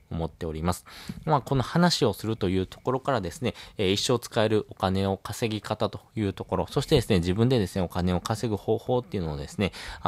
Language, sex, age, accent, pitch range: Japanese, male, 20-39, native, 90-115 Hz